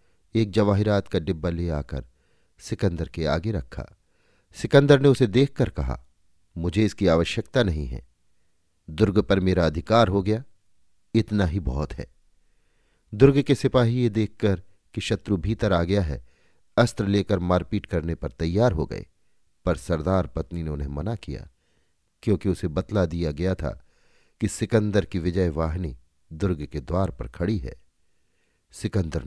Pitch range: 80-110 Hz